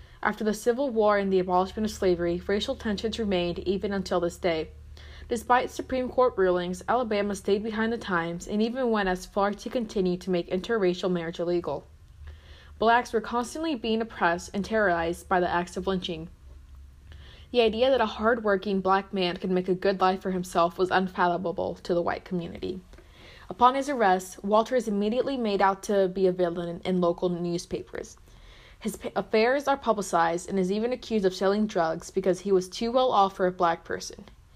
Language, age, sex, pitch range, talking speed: English, 20-39, female, 175-220 Hz, 180 wpm